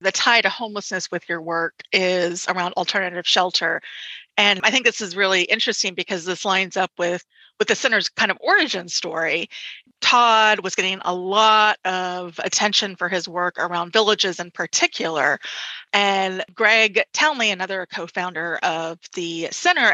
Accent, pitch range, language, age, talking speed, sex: American, 180-220 Hz, English, 30-49, 155 wpm, female